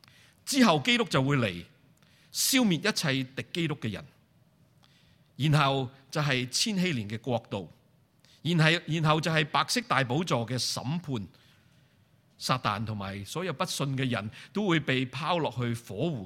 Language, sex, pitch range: Chinese, male, 120-165 Hz